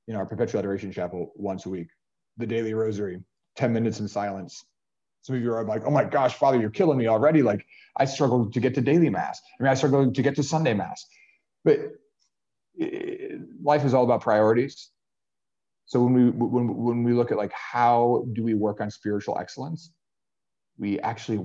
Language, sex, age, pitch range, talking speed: English, male, 30-49, 95-120 Hz, 195 wpm